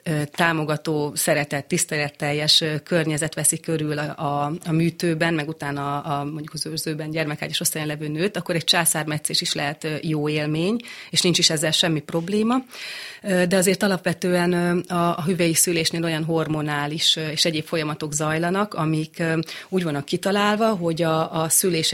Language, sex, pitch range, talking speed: Hungarian, female, 155-180 Hz, 150 wpm